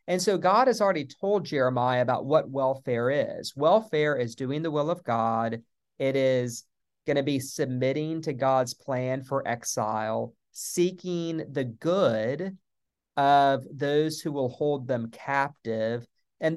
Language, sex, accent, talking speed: English, male, American, 145 wpm